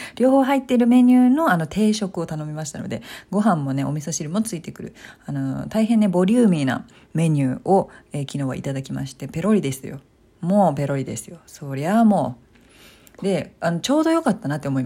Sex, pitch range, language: female, 145-240 Hz, Japanese